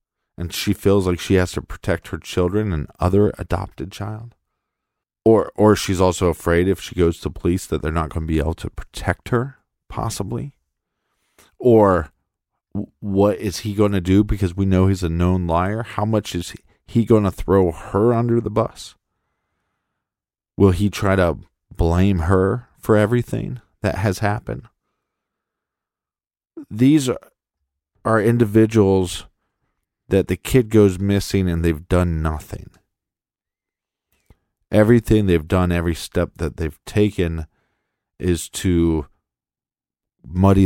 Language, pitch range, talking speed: English, 85-105 Hz, 140 wpm